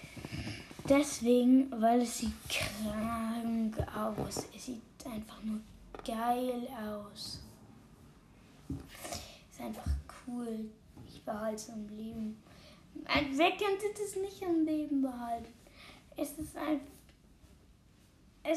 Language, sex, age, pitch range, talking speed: German, female, 20-39, 225-290 Hz, 95 wpm